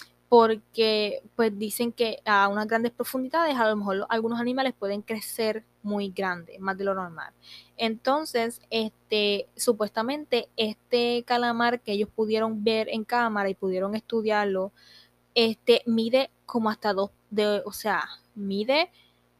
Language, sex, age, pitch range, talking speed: Spanish, female, 10-29, 190-240 Hz, 135 wpm